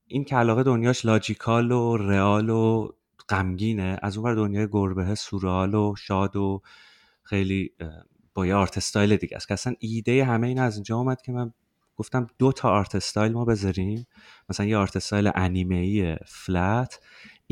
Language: Persian